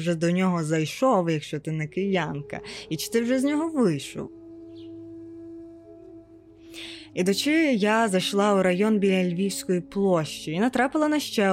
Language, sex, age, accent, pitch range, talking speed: Ukrainian, female, 20-39, native, 165-210 Hz, 150 wpm